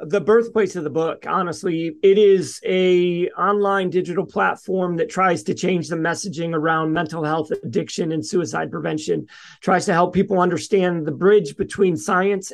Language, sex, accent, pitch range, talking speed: English, male, American, 170-195 Hz, 165 wpm